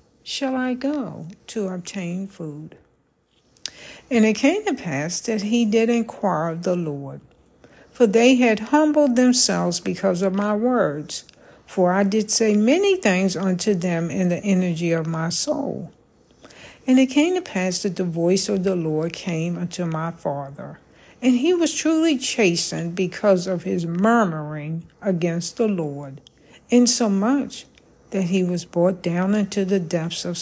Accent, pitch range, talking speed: American, 170-240 Hz, 155 wpm